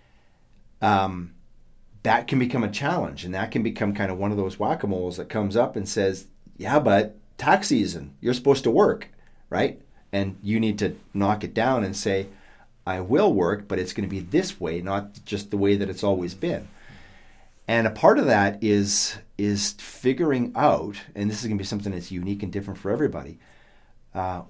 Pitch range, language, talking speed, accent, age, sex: 95-110 Hz, English, 195 wpm, American, 40-59, male